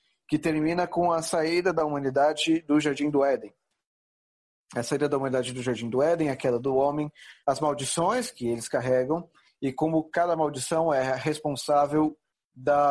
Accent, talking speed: Brazilian, 160 wpm